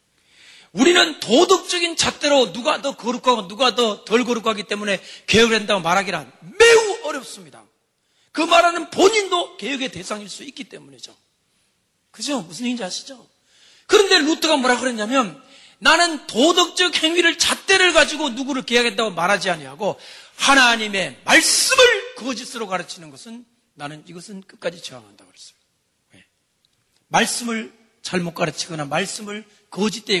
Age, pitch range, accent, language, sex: 40-59, 190-295 Hz, native, Korean, male